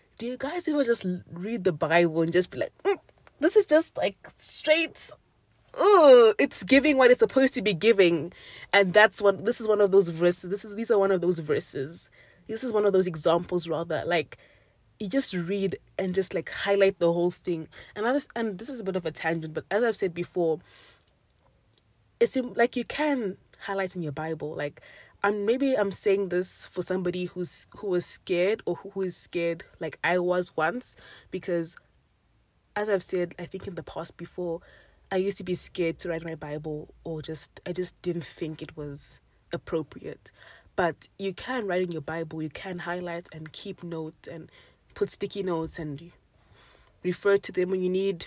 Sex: female